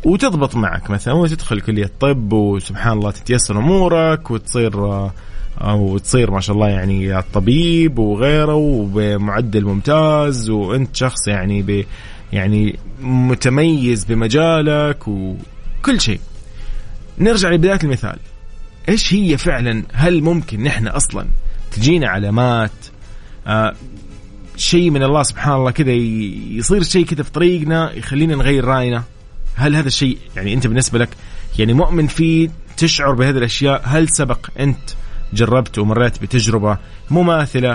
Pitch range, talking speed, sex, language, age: 105-150 Hz, 120 wpm, male, Arabic, 20-39